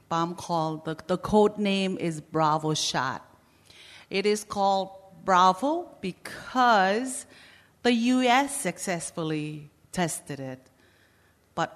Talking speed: 100 wpm